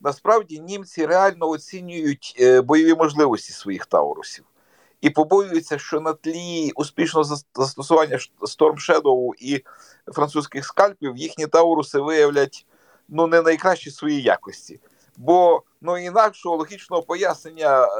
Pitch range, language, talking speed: 135-170 Hz, Ukrainian, 115 wpm